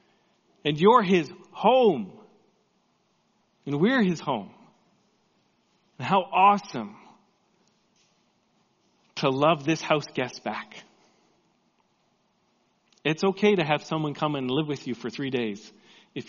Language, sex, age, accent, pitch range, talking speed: English, male, 40-59, American, 125-185 Hz, 115 wpm